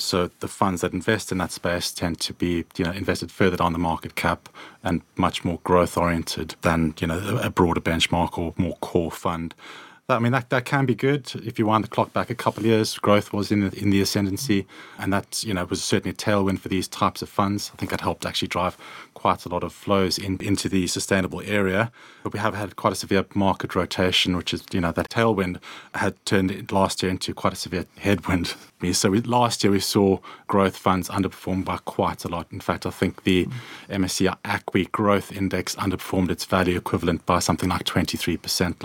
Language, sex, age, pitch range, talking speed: English, male, 30-49, 90-110 Hz, 220 wpm